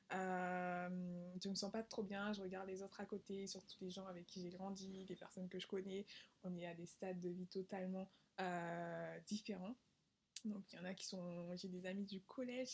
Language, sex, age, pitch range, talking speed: French, female, 20-39, 185-220 Hz, 220 wpm